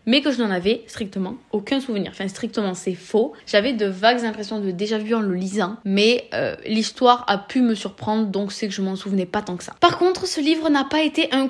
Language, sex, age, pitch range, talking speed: French, female, 20-39, 210-260 Hz, 245 wpm